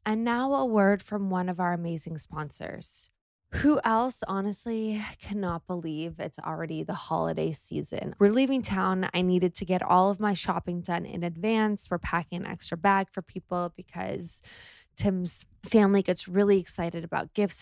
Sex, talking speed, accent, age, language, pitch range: female, 165 wpm, American, 20-39, English, 175-205 Hz